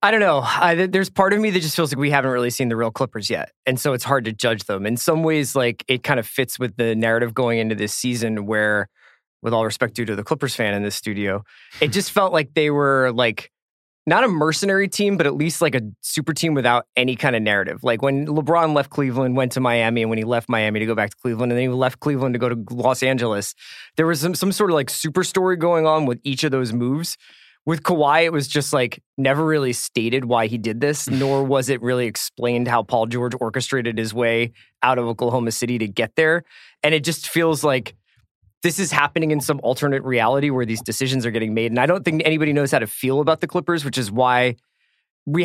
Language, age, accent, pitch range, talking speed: English, 20-39, American, 115-155 Hz, 245 wpm